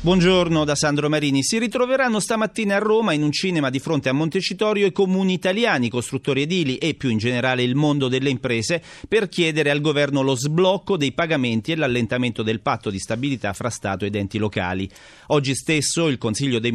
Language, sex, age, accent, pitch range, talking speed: Italian, male, 40-59, native, 115-165 Hz, 190 wpm